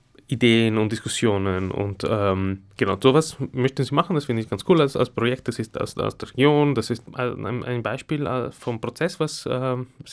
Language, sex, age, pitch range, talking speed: German, male, 20-39, 115-135 Hz, 195 wpm